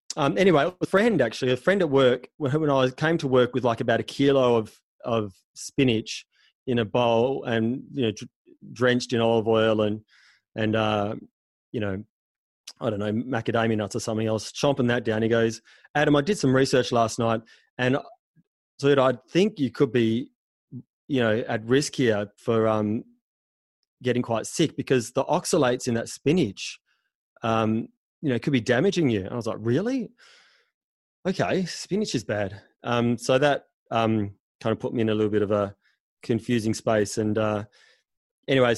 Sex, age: male, 30-49